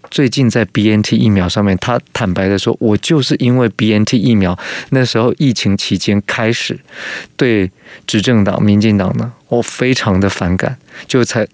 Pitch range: 100-125 Hz